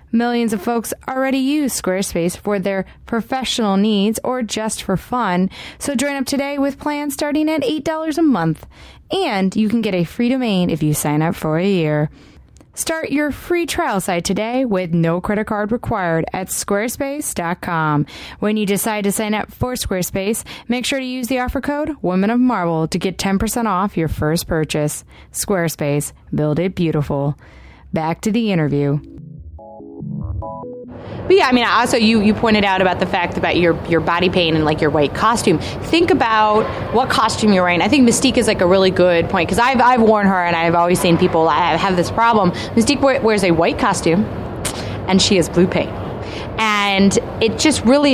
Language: English